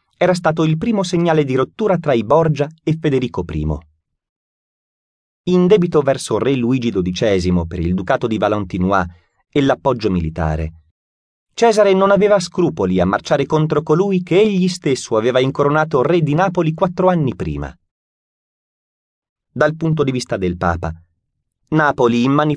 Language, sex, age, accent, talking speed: Italian, male, 30-49, native, 145 wpm